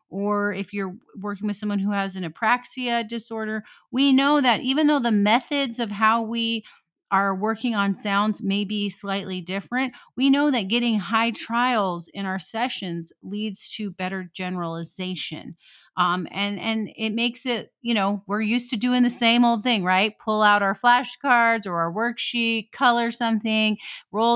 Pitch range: 205-265 Hz